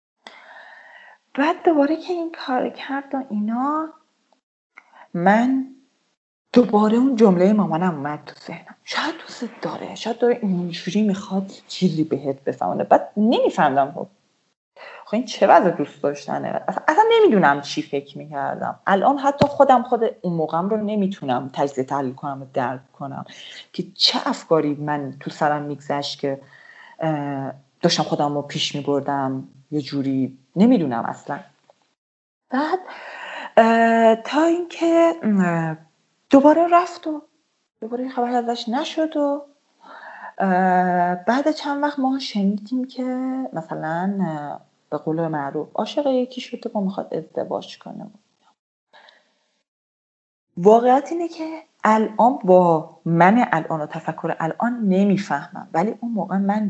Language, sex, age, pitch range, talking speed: Persian, female, 30-49, 155-255 Hz, 120 wpm